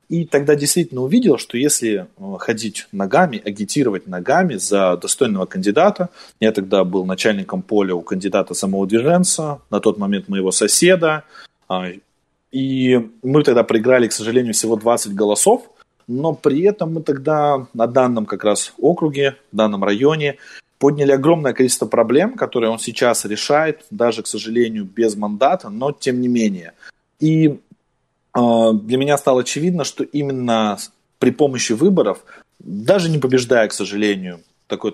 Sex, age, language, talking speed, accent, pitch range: male, 20-39, Russian, 140 wpm, native, 110-145 Hz